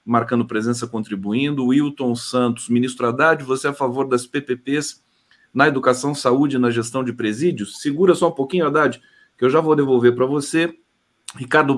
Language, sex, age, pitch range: Portuguese, male, 40-59, 125-180 Hz